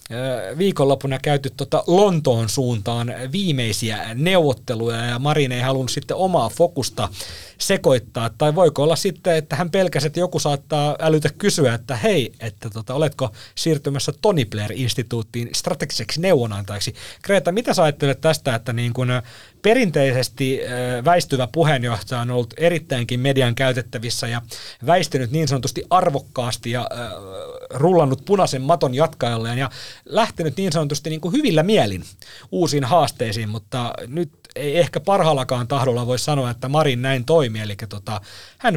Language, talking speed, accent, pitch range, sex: Finnish, 125 wpm, native, 120-160 Hz, male